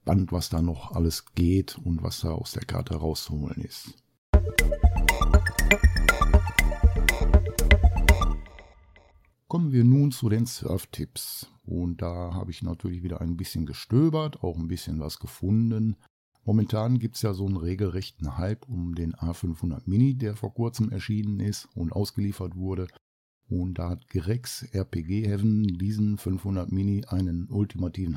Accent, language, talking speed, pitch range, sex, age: German, German, 135 wpm, 90-115 Hz, male, 60-79